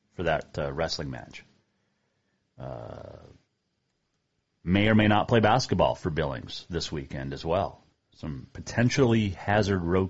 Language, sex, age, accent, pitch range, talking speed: English, male, 40-59, American, 90-120 Hz, 130 wpm